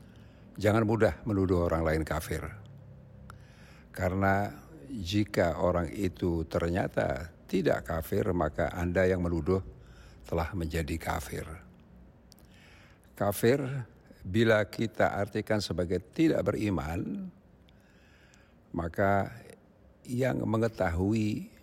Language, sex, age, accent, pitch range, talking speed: Indonesian, male, 60-79, native, 85-105 Hz, 85 wpm